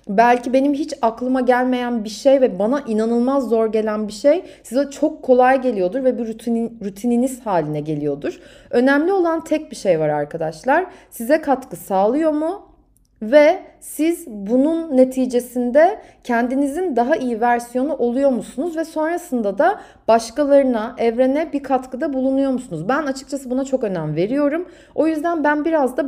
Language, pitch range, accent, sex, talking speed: Turkish, 220-285 Hz, native, female, 150 wpm